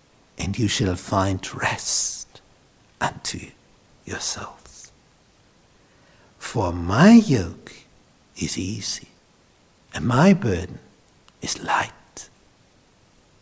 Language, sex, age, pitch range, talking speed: English, male, 60-79, 115-180 Hz, 75 wpm